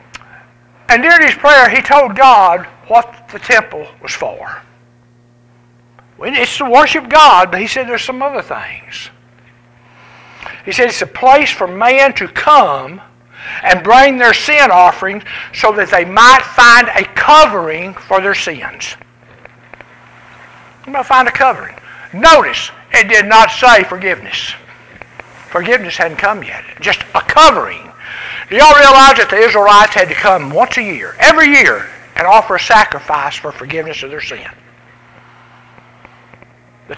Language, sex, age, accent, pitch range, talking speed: English, male, 60-79, American, 175-275 Hz, 145 wpm